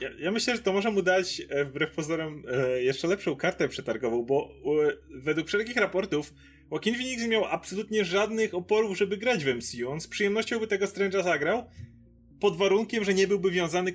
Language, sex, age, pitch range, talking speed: Polish, male, 20-39, 140-185 Hz, 190 wpm